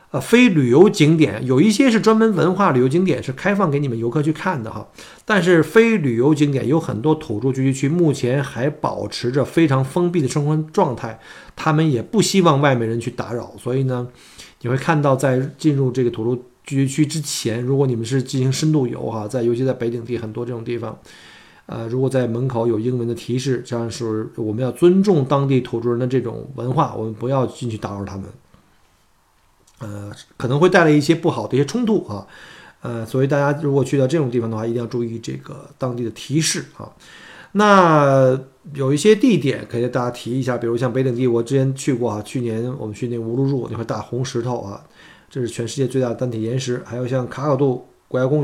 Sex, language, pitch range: male, Chinese, 120-150 Hz